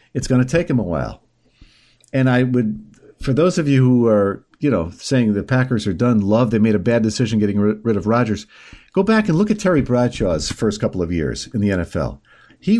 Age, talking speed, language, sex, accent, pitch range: 50-69, 225 wpm, English, male, American, 110-135 Hz